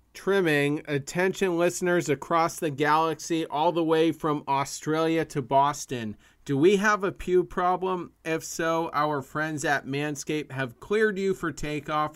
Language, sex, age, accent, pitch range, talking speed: English, male, 40-59, American, 130-160 Hz, 150 wpm